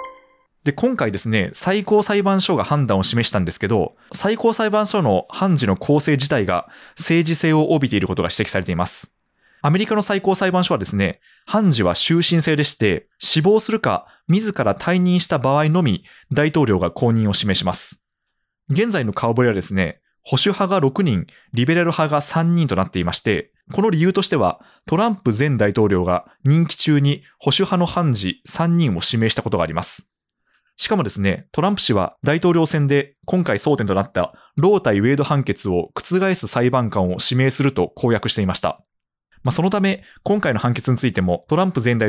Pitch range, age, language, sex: 110-170 Hz, 20-39, Japanese, male